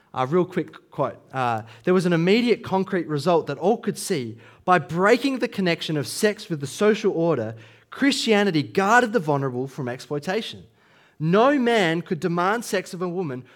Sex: male